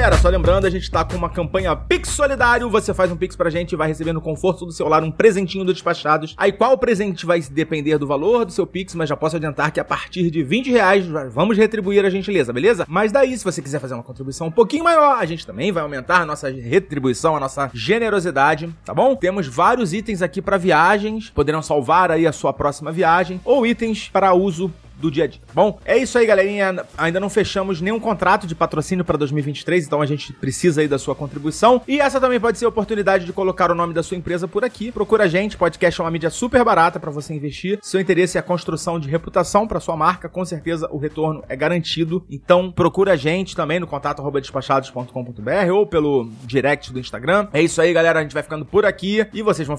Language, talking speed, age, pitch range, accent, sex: Portuguese, 230 wpm, 30-49, 155-200 Hz, Brazilian, male